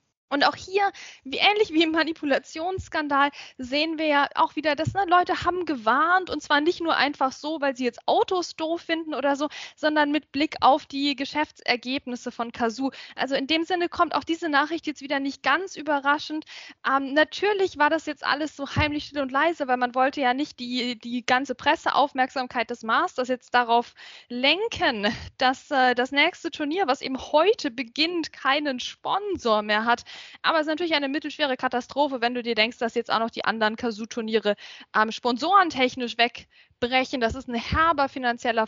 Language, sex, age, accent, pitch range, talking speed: German, female, 10-29, German, 245-320 Hz, 180 wpm